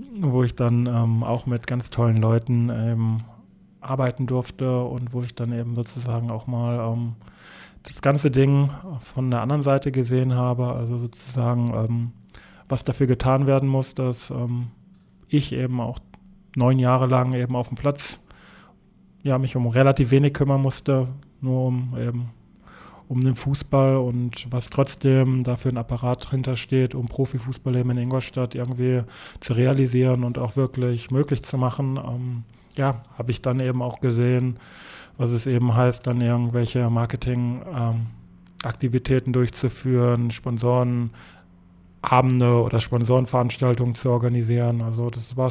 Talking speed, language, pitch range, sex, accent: 140 wpm, German, 120-130 Hz, male, German